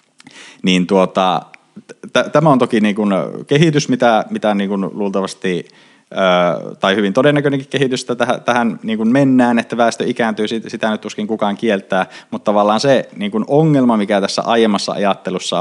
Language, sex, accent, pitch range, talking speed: Finnish, male, native, 95-120 Hz, 160 wpm